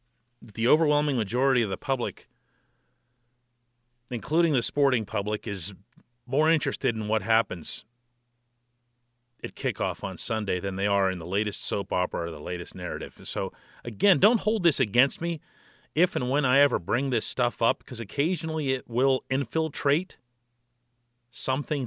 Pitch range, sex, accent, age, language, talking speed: 120-155 Hz, male, American, 40-59, English, 150 wpm